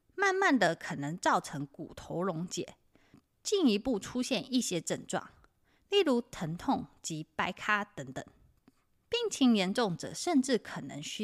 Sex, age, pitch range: female, 20-39, 185-300 Hz